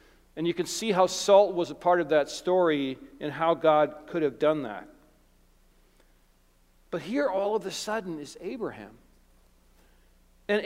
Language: English